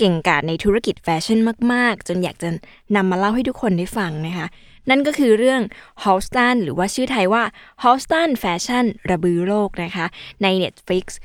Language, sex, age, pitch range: Thai, female, 20-39, 175-225 Hz